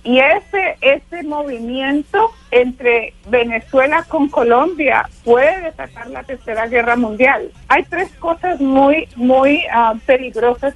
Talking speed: 115 wpm